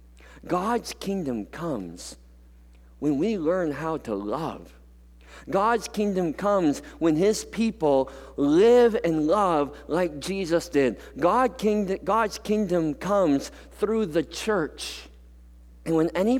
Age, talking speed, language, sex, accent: 50-69, 110 wpm, English, male, American